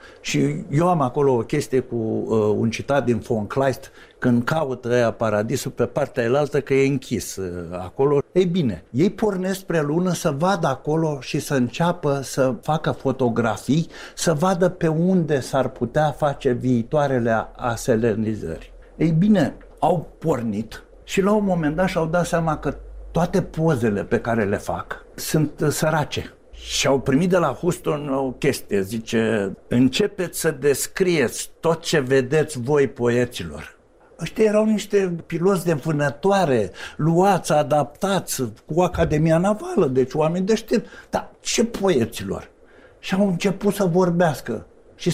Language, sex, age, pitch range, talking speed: Romanian, male, 60-79, 130-180 Hz, 150 wpm